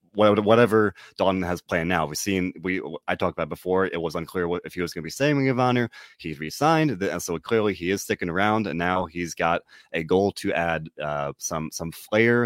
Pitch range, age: 80-100 Hz, 30-49